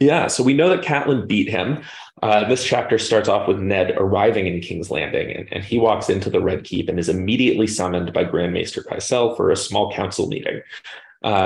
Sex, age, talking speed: male, 30-49, 215 wpm